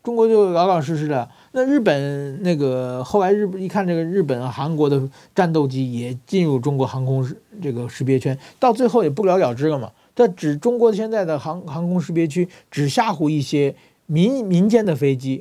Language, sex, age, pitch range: Chinese, male, 50-69, 140-210 Hz